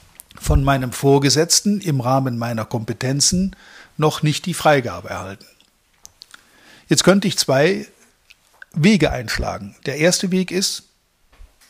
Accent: German